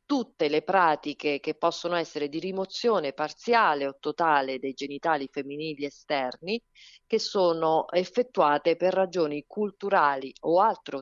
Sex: female